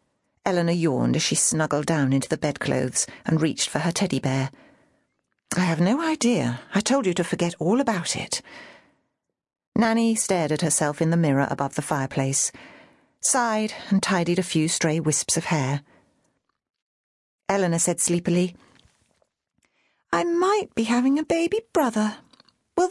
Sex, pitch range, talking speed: female, 160-255 Hz, 150 wpm